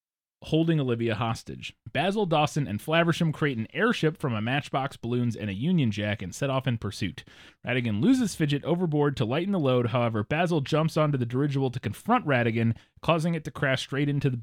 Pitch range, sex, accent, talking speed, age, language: 115-155 Hz, male, American, 195 wpm, 30-49, English